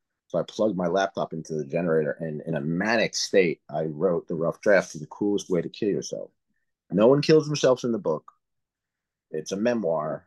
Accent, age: American, 30-49